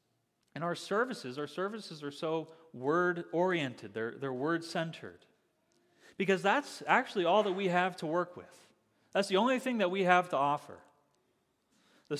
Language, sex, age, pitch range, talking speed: English, male, 30-49, 145-190 Hz, 150 wpm